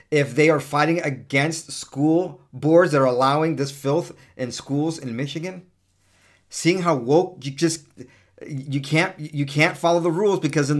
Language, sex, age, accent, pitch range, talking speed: English, male, 40-59, American, 105-150 Hz, 165 wpm